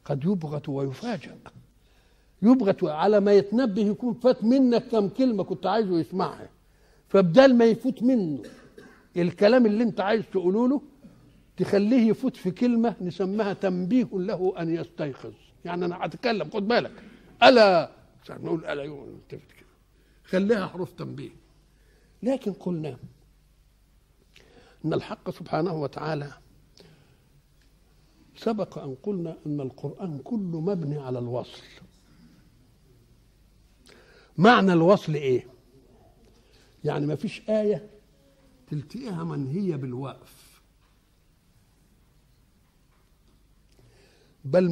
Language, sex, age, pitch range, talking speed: Arabic, male, 60-79, 145-210 Hz, 95 wpm